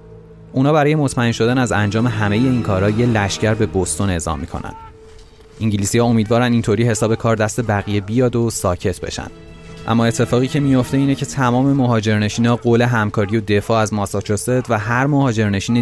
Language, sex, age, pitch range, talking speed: Persian, male, 30-49, 95-120 Hz, 165 wpm